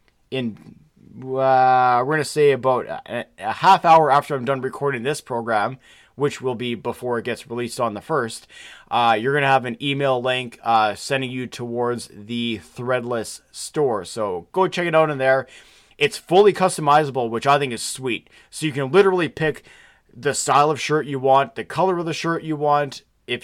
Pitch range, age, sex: 125-160 Hz, 30-49, male